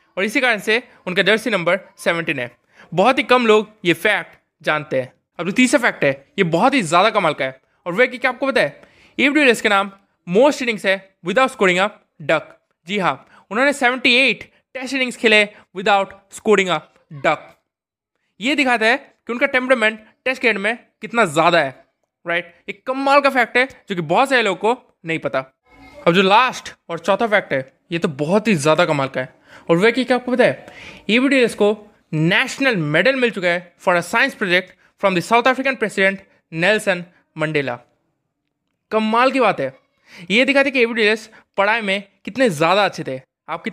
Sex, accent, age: male, native, 20-39